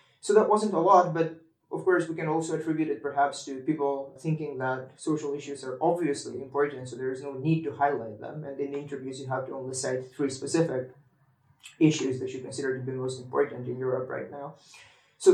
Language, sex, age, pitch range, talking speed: English, male, 20-39, 140-180 Hz, 210 wpm